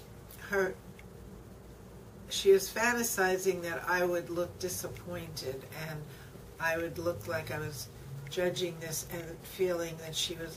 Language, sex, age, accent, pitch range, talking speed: English, female, 60-79, American, 165-190 Hz, 130 wpm